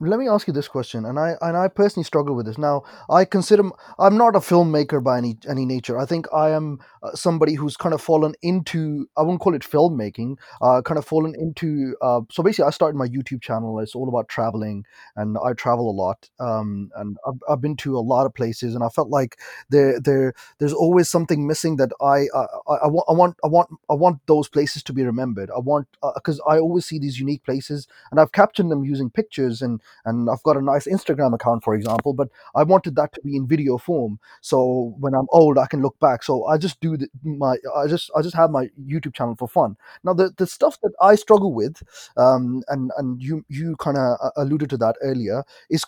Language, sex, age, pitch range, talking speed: English, male, 30-49, 130-170 Hz, 235 wpm